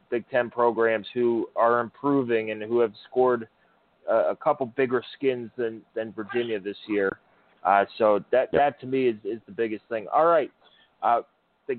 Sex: male